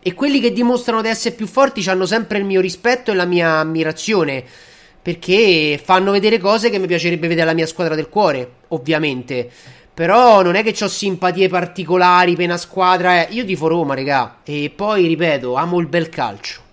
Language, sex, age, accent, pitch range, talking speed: Italian, male, 30-49, native, 160-205 Hz, 190 wpm